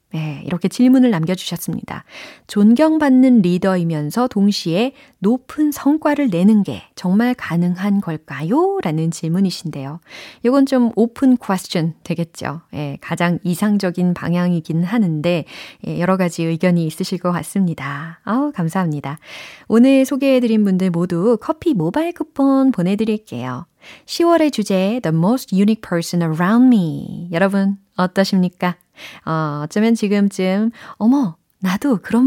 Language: Korean